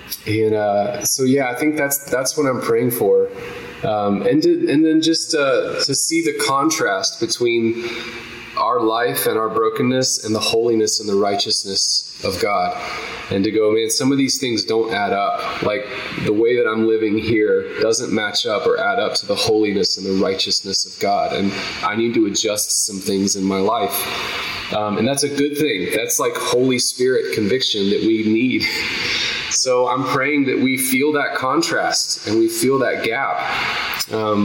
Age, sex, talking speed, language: 20-39, male, 185 wpm, English